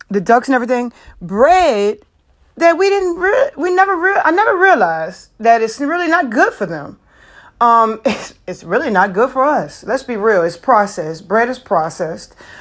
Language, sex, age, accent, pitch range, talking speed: English, female, 30-49, American, 185-240 Hz, 180 wpm